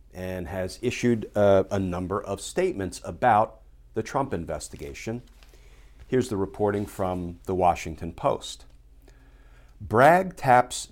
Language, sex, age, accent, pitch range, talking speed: English, male, 50-69, American, 85-125 Hz, 115 wpm